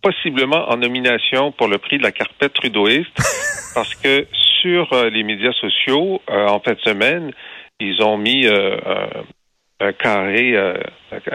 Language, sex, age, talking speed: French, male, 50-69, 160 wpm